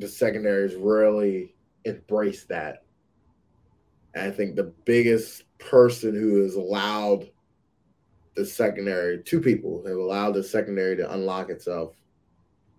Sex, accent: male, American